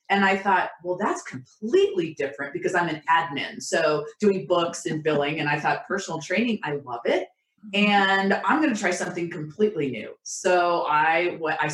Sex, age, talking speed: female, 30-49, 180 wpm